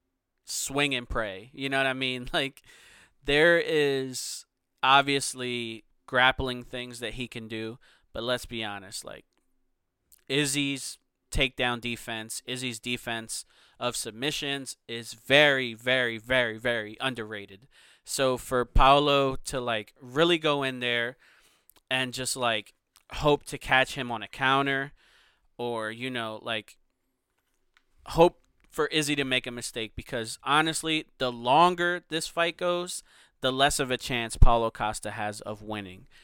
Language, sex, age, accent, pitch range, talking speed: English, male, 20-39, American, 115-140 Hz, 135 wpm